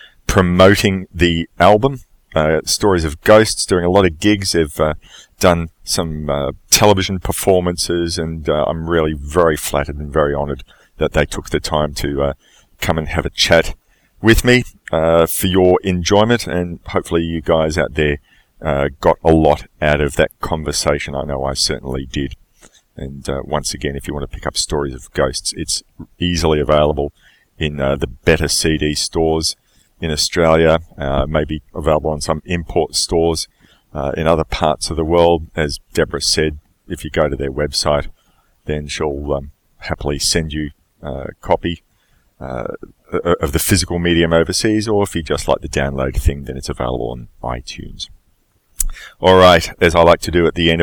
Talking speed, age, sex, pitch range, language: 175 wpm, 40-59, male, 75-90 Hz, English